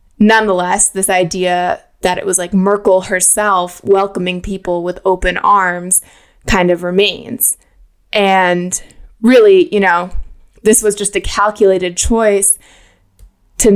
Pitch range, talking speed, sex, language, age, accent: 180-210 Hz, 120 wpm, female, English, 20-39, American